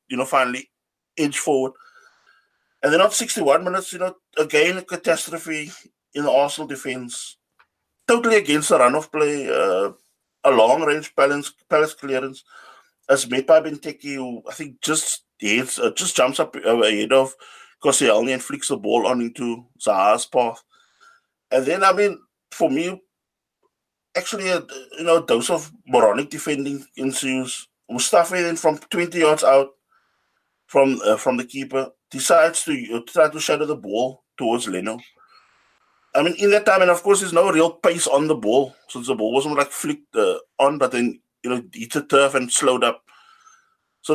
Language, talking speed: English, 170 wpm